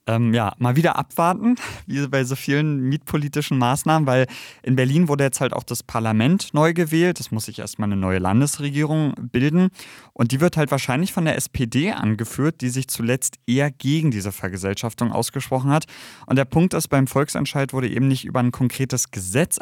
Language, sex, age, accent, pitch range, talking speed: German, male, 30-49, German, 105-135 Hz, 185 wpm